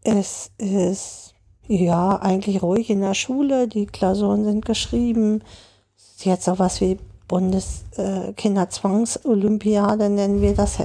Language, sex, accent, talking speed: German, female, German, 120 wpm